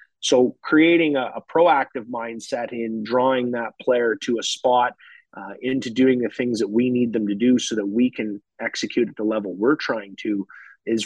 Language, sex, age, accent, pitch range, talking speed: English, male, 30-49, American, 110-130 Hz, 195 wpm